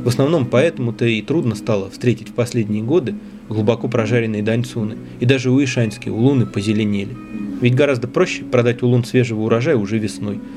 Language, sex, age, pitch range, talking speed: Russian, male, 20-39, 105-150 Hz, 155 wpm